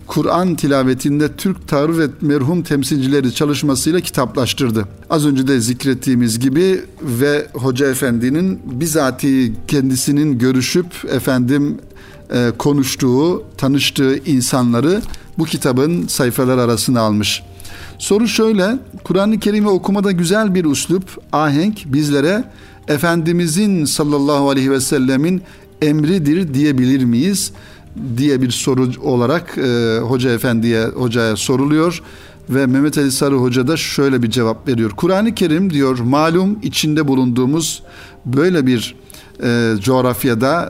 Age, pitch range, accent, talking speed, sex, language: 60-79, 120-155 Hz, native, 115 wpm, male, Turkish